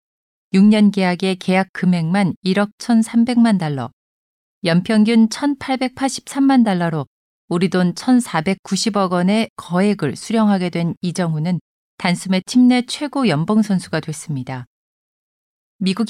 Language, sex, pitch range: Korean, female, 170-220 Hz